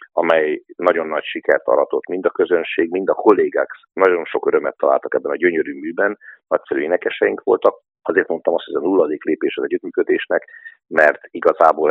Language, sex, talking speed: Hungarian, male, 165 wpm